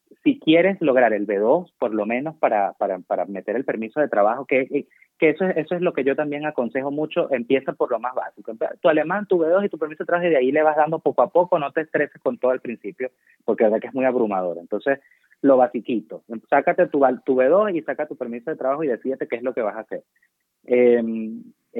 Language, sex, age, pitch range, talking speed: Spanish, male, 30-49, 115-160 Hz, 245 wpm